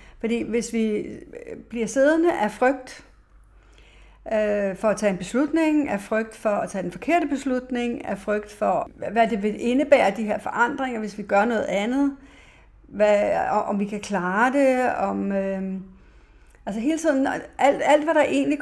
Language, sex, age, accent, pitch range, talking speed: Danish, female, 60-79, native, 205-265 Hz, 170 wpm